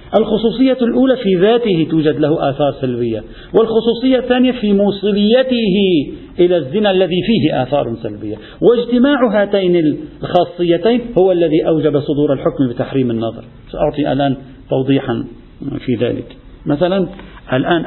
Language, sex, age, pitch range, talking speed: Arabic, male, 50-69, 130-165 Hz, 120 wpm